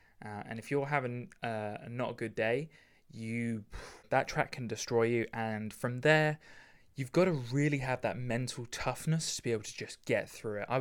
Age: 20-39